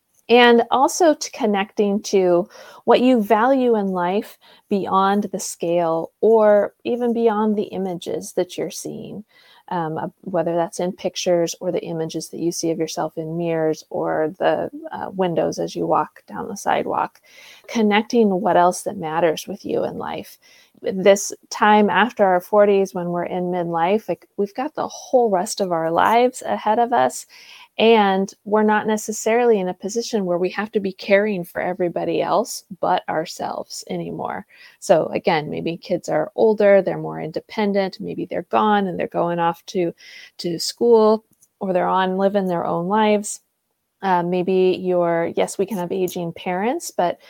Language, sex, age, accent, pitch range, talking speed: English, female, 30-49, American, 175-215 Hz, 165 wpm